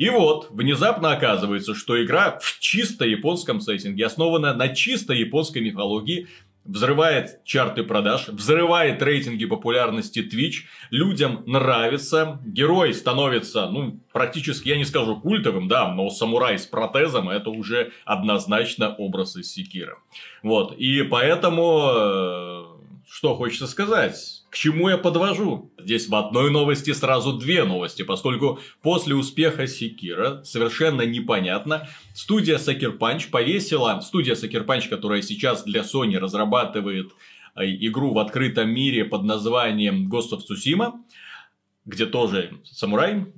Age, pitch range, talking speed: 30-49, 105-165 Hz, 120 wpm